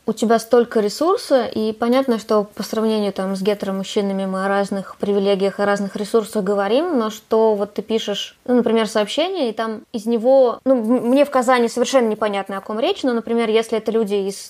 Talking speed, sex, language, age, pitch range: 200 wpm, female, Russian, 20-39, 220-260 Hz